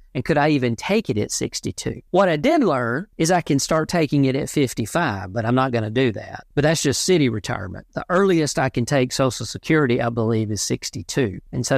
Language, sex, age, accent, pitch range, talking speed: English, male, 50-69, American, 115-145 Hz, 230 wpm